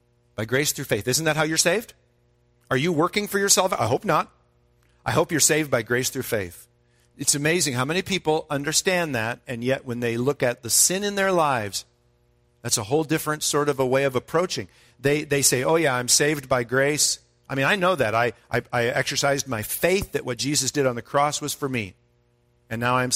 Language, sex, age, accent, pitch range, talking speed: English, male, 50-69, American, 110-150 Hz, 225 wpm